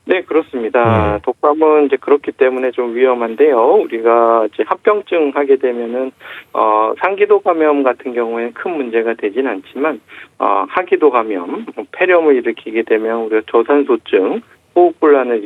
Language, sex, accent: Korean, male, native